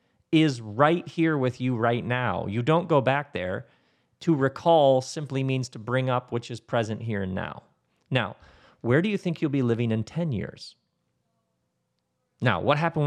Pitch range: 115-160 Hz